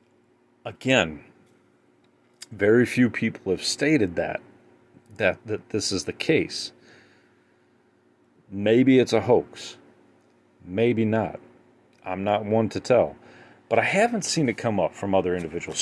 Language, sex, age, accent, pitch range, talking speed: English, male, 40-59, American, 85-110 Hz, 130 wpm